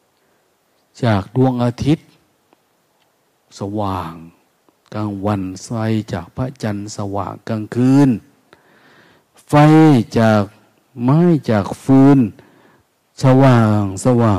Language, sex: Thai, male